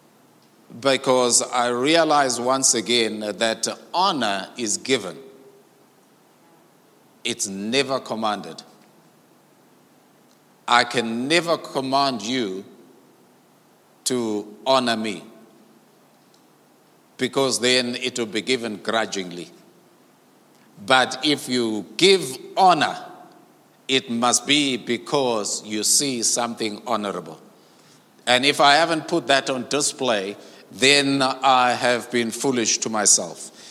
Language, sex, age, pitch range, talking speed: English, male, 50-69, 115-150 Hz, 100 wpm